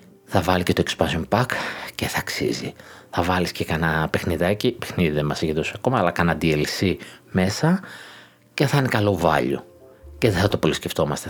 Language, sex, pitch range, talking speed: Greek, male, 85-115 Hz, 185 wpm